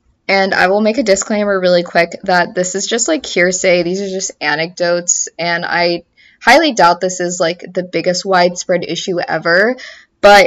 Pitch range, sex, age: 175-225 Hz, female, 20-39